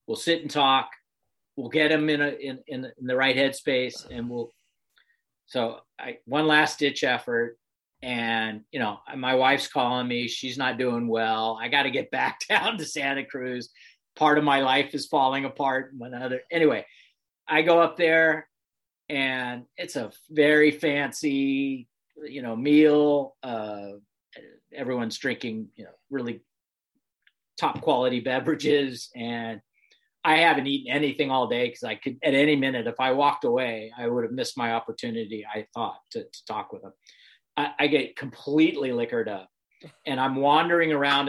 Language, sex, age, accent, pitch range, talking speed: English, male, 40-59, American, 120-145 Hz, 165 wpm